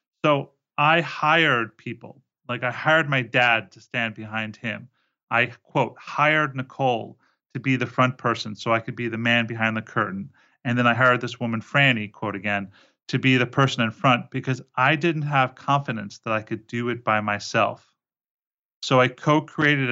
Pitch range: 110-135 Hz